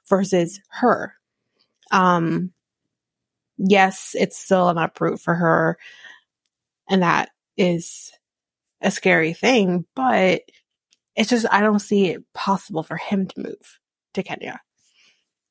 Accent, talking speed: American, 115 wpm